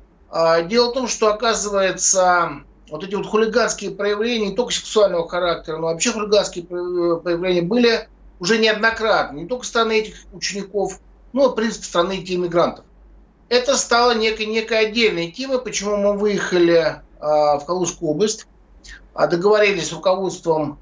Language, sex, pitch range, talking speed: Russian, male, 175-220 Hz, 140 wpm